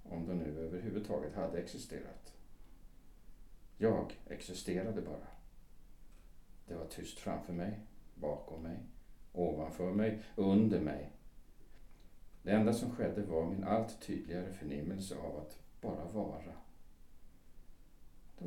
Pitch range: 80-100 Hz